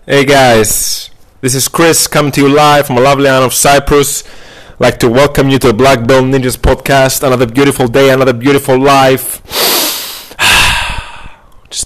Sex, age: male, 30-49